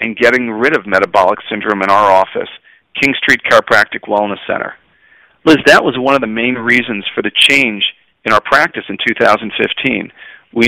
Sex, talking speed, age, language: male, 175 wpm, 40-59, English